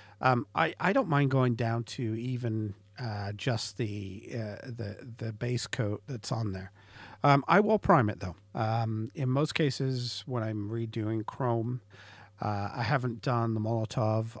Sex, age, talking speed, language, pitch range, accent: male, 50-69, 165 wpm, English, 105-130 Hz, American